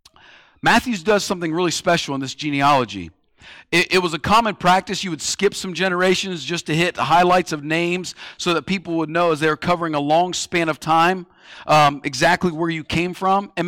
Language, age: English, 50-69